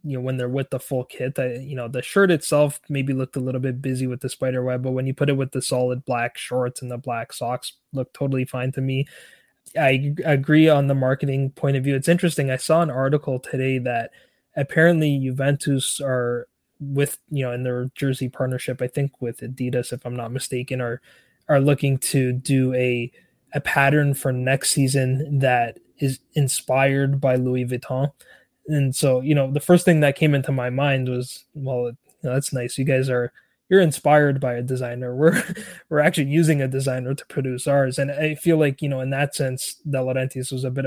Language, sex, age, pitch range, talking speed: English, male, 20-39, 125-145 Hz, 205 wpm